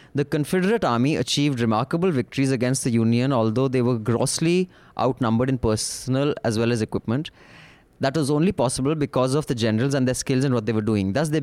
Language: English